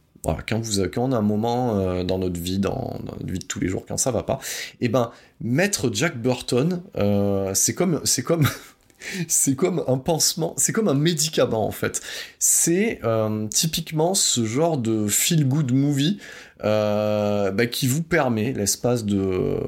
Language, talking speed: French, 180 wpm